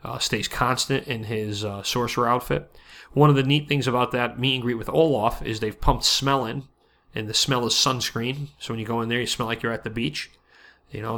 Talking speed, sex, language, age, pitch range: 240 wpm, male, English, 30-49, 110-135 Hz